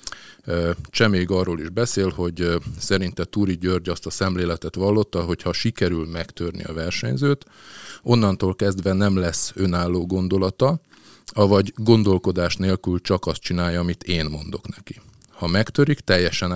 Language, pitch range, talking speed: Hungarian, 85-105 Hz, 130 wpm